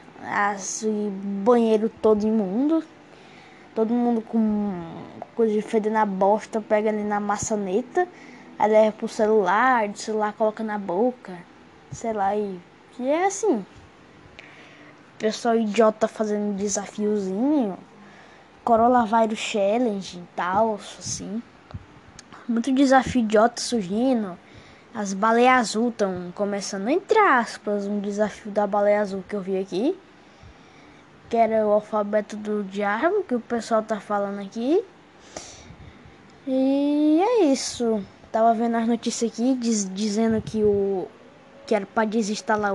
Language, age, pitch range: Portuguese, 10-29, 205-235 Hz